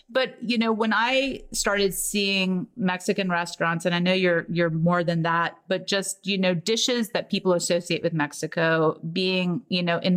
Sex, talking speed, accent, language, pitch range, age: female, 185 wpm, American, English, 160-205 Hz, 30-49